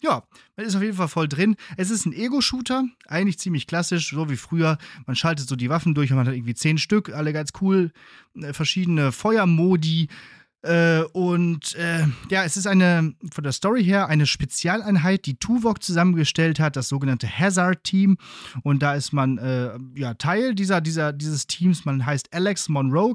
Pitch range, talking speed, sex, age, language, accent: 135-175 Hz, 175 wpm, male, 30-49, German, German